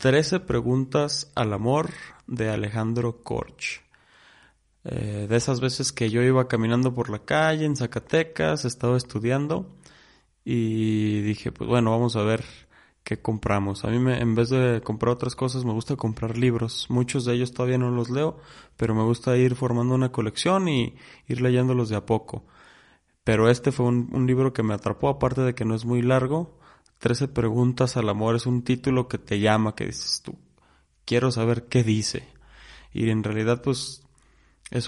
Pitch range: 110-130 Hz